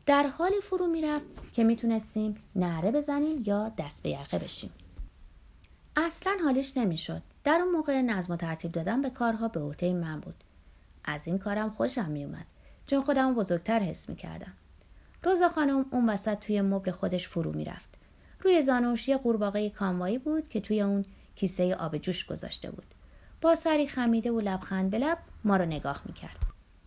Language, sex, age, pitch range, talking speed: Persian, female, 30-49, 180-280 Hz, 165 wpm